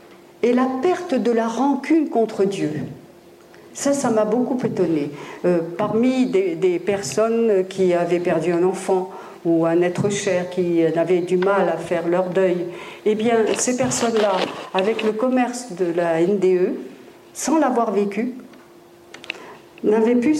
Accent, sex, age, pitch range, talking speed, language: French, female, 50-69, 180-240 Hz, 145 wpm, French